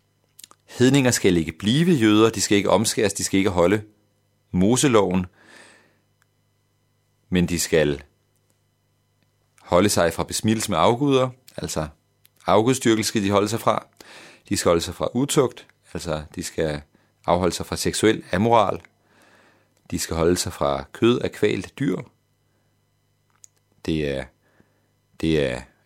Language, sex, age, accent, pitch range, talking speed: Danish, male, 40-59, native, 90-115 Hz, 130 wpm